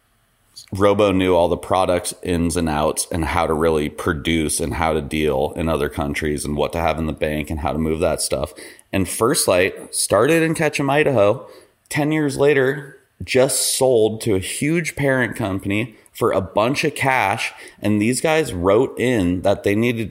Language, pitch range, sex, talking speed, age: English, 90-130 Hz, male, 190 wpm, 30-49